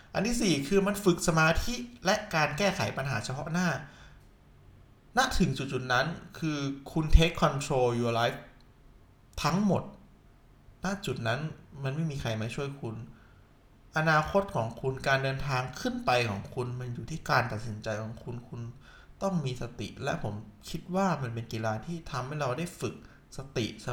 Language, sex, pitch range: Thai, male, 120-170 Hz